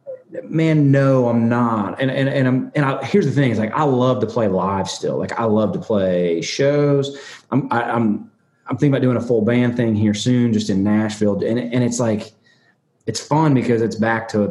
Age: 30-49